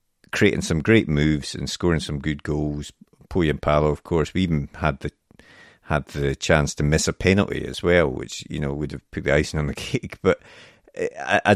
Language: English